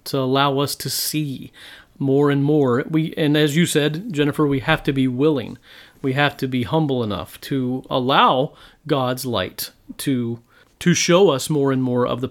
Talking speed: 185 wpm